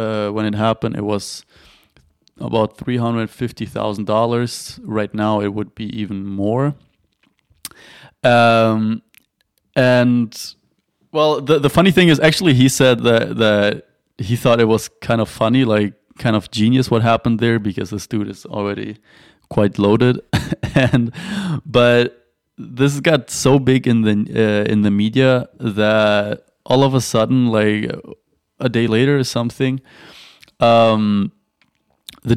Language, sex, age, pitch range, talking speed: English, male, 20-39, 105-125 Hz, 135 wpm